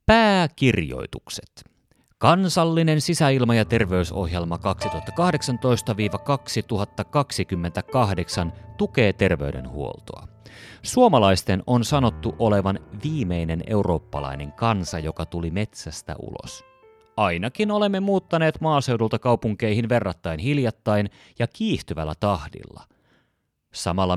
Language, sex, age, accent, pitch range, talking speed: Finnish, male, 30-49, native, 90-145 Hz, 75 wpm